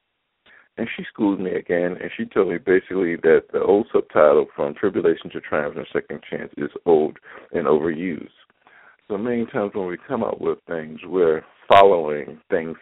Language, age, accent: English, 60-79, American